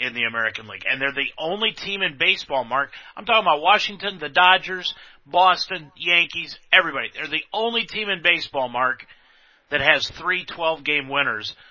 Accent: American